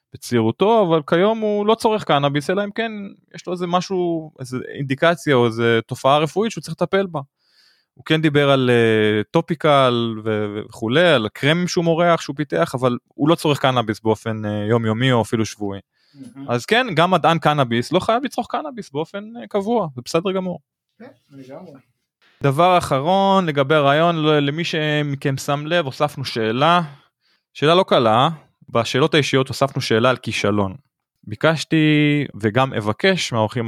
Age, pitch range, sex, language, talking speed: 20-39, 120-165 Hz, male, Hebrew, 145 wpm